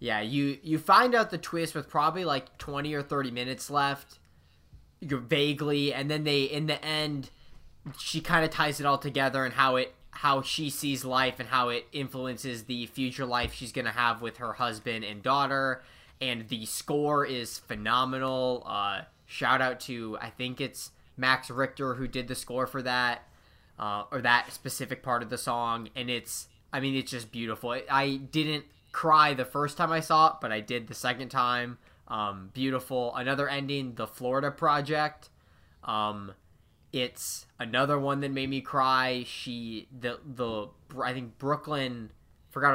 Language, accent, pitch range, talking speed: English, American, 120-140 Hz, 175 wpm